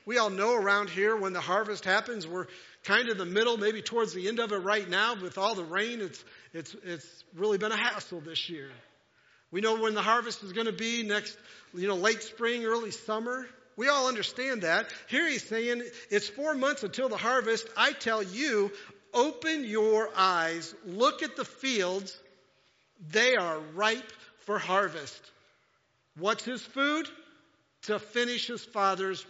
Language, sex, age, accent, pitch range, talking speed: English, male, 50-69, American, 180-230 Hz, 175 wpm